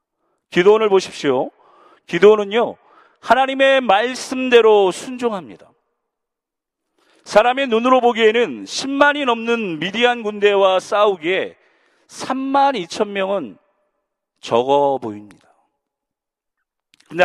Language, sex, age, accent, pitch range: Korean, male, 40-59, native, 180-255 Hz